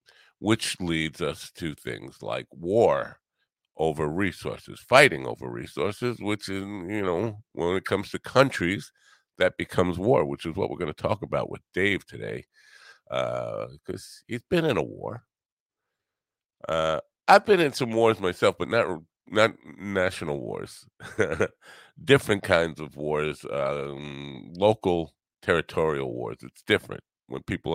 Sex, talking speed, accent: male, 145 wpm, American